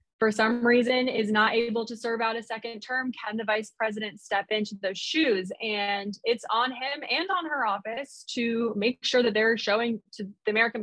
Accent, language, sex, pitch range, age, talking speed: American, English, female, 200-245 Hz, 20-39, 205 wpm